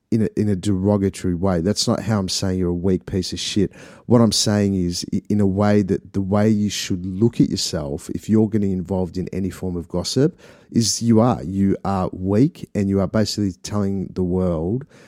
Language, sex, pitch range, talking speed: English, male, 95-110 Hz, 210 wpm